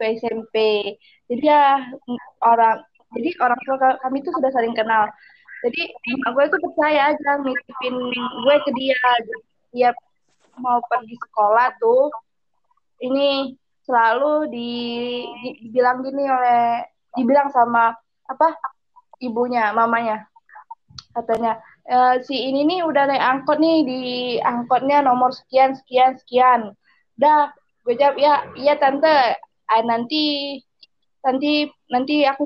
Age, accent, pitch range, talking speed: 20-39, native, 240-290 Hz, 120 wpm